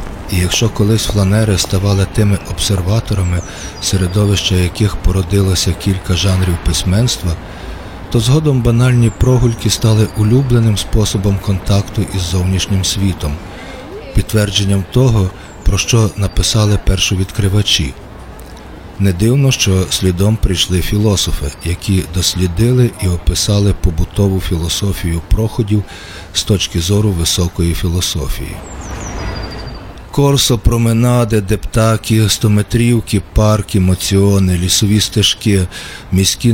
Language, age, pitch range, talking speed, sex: Ukrainian, 40-59, 95-110 Hz, 95 wpm, male